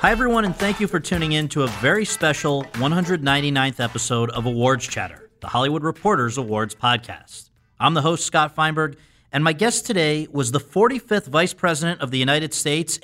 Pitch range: 125-175 Hz